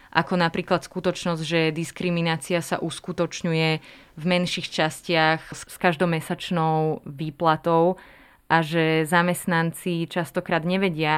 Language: Slovak